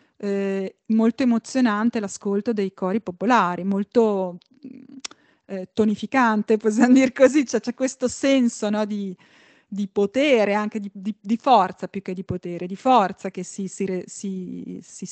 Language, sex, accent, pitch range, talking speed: Italian, female, native, 200-250 Hz, 125 wpm